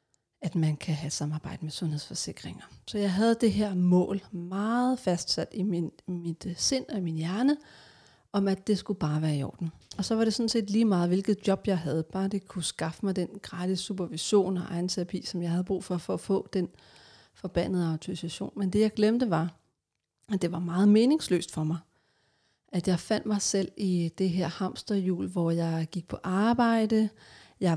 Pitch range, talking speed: 170-205 Hz, 195 wpm